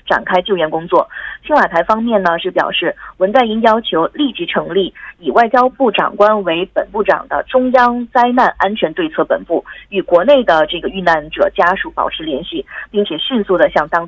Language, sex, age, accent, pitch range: Korean, female, 20-39, Chinese, 170-235 Hz